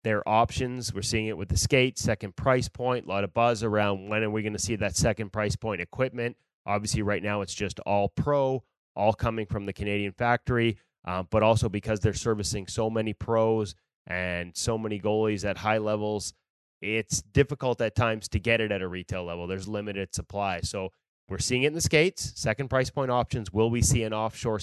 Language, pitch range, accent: English, 100-120 Hz, American